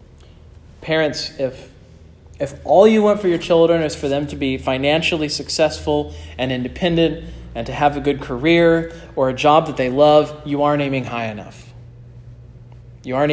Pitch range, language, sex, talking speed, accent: 130-180 Hz, English, male, 165 wpm, American